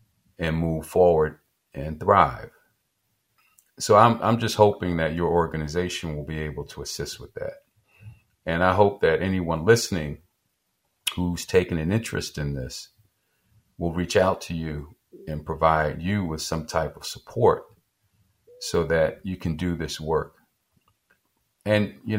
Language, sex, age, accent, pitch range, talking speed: English, male, 50-69, American, 80-105 Hz, 145 wpm